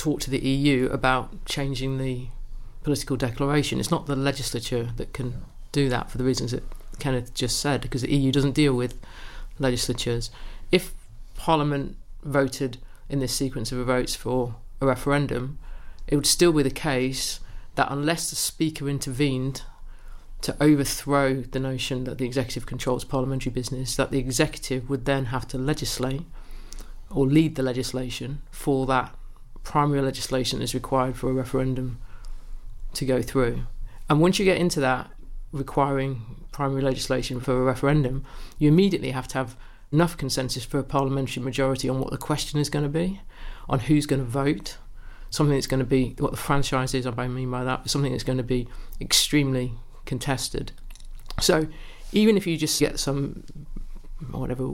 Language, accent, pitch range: English, British, 125-145 Hz